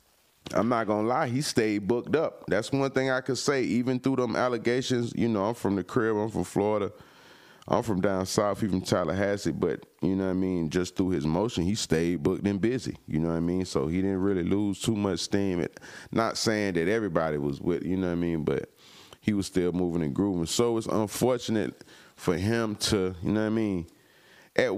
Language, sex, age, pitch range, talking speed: English, male, 30-49, 90-120 Hz, 225 wpm